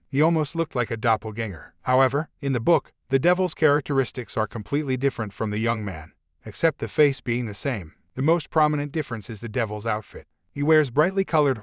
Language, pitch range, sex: English, 110-145 Hz, male